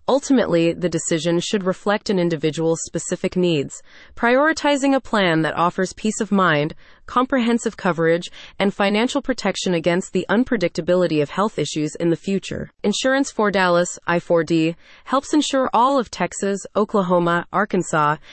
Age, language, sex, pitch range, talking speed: 30-49, English, female, 170-215 Hz, 140 wpm